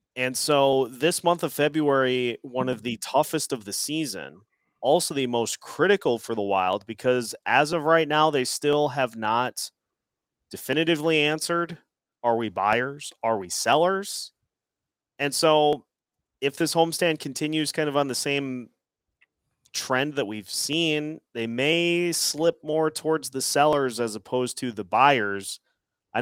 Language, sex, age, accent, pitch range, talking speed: English, male, 30-49, American, 120-160 Hz, 150 wpm